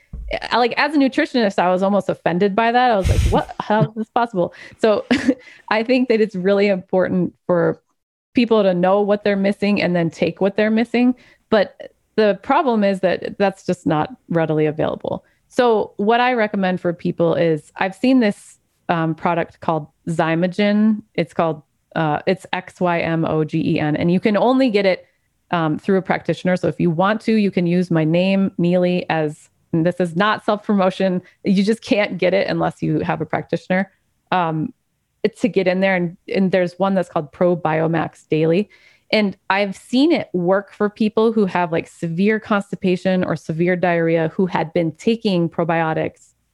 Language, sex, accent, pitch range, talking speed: English, female, American, 170-210 Hz, 180 wpm